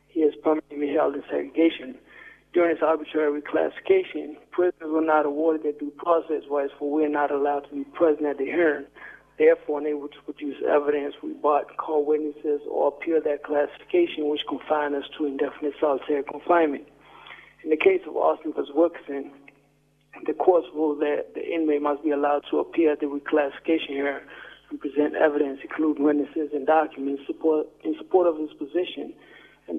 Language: English